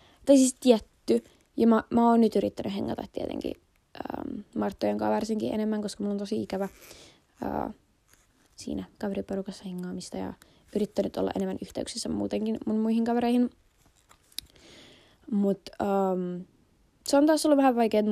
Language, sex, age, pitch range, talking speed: Finnish, female, 20-39, 185-230 Hz, 140 wpm